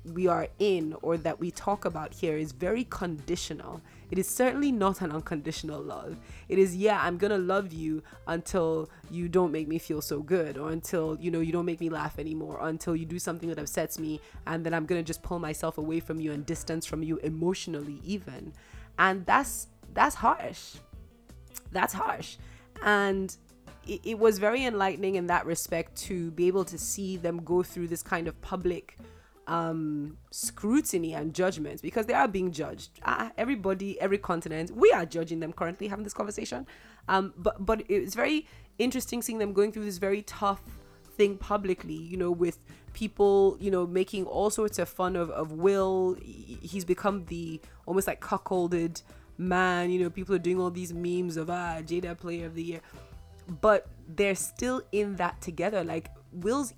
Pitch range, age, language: 160-195 Hz, 20-39, English